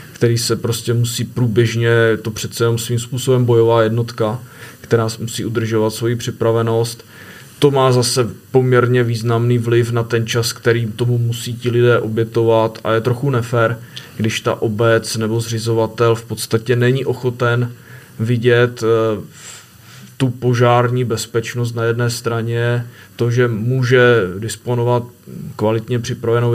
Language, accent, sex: Czech, native, male